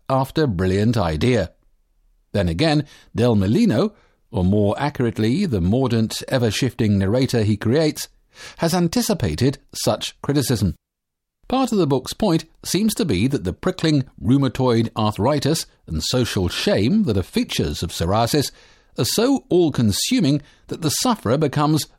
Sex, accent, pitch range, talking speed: male, British, 105-160 Hz, 130 wpm